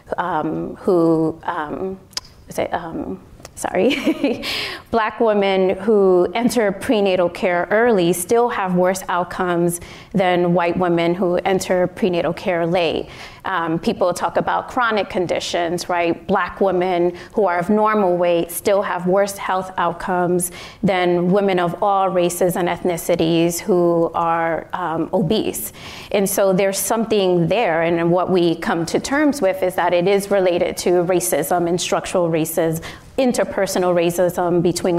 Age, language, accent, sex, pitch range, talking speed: 30-49, English, American, female, 175-200 Hz, 135 wpm